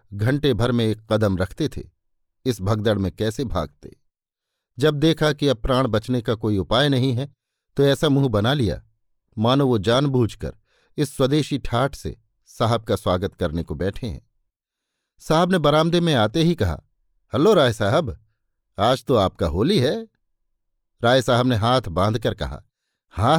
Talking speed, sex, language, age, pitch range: 165 wpm, male, Hindi, 50-69, 105-135 Hz